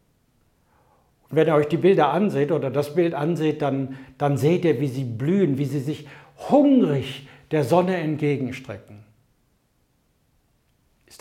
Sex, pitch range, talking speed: male, 125-160 Hz, 140 wpm